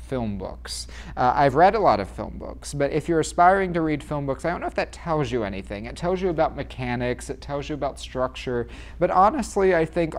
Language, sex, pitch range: English, male, 100-140 Hz